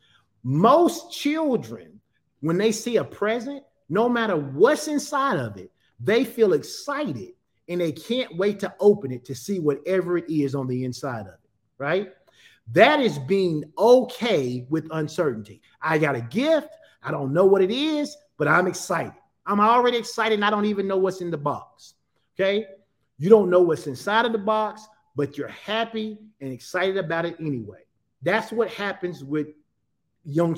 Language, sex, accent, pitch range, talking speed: English, male, American, 145-205 Hz, 170 wpm